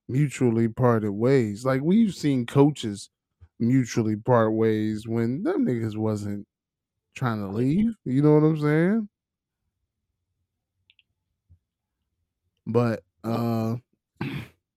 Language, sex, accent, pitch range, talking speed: English, male, American, 100-140 Hz, 95 wpm